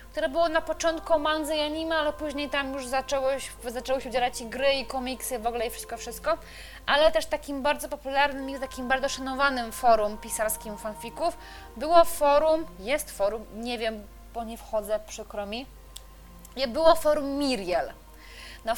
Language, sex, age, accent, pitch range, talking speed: Polish, female, 20-39, native, 230-285 Hz, 165 wpm